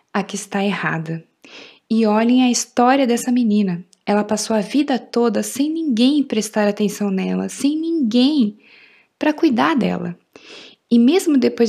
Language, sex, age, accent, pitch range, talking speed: Portuguese, female, 20-39, Brazilian, 215-275 Hz, 145 wpm